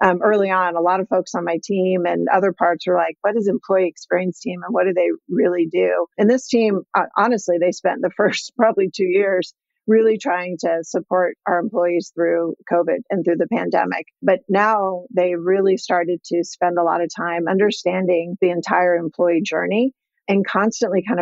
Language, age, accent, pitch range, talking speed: English, 40-59, American, 170-205 Hz, 195 wpm